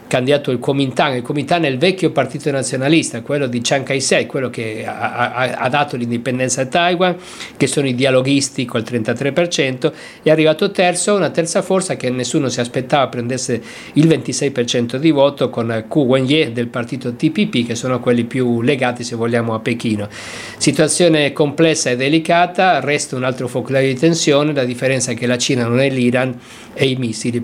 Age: 50-69